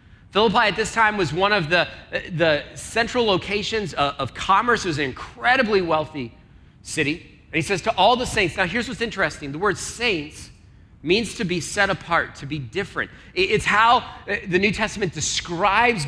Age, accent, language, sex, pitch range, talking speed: 30-49, American, English, male, 150-225 Hz, 180 wpm